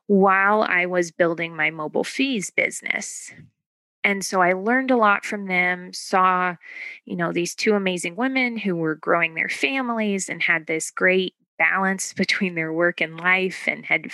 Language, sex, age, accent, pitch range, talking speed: English, female, 20-39, American, 170-200 Hz, 170 wpm